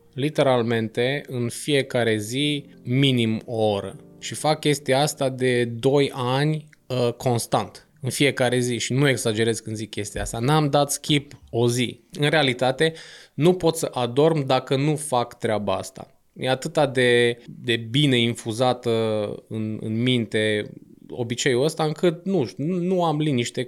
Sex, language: male, Romanian